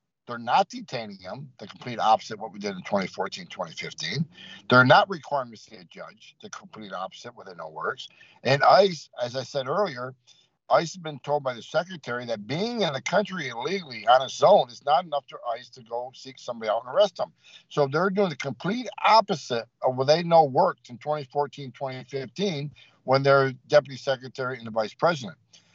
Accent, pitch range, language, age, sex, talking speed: American, 130-175 Hz, English, 60-79, male, 200 wpm